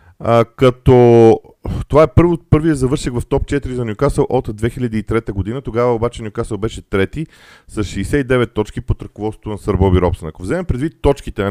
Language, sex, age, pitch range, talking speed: Bulgarian, male, 40-59, 100-130 Hz, 170 wpm